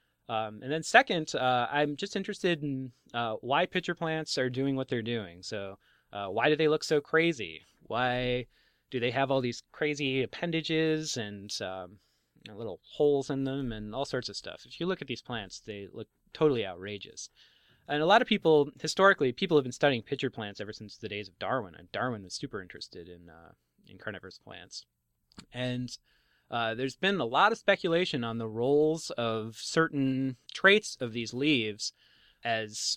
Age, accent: 20-39, American